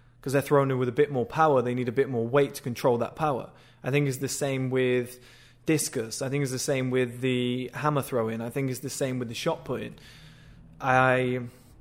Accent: British